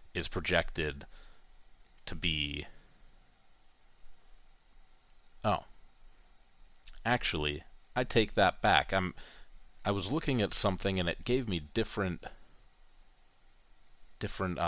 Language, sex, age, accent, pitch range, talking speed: English, male, 30-49, American, 80-100 Hz, 90 wpm